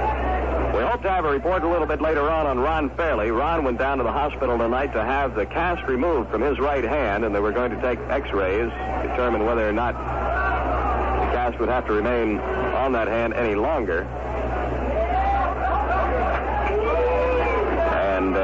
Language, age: English, 60-79